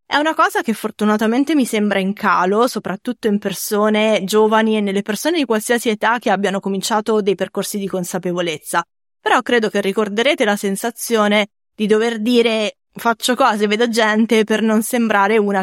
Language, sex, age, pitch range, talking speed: Italian, female, 20-39, 190-240 Hz, 165 wpm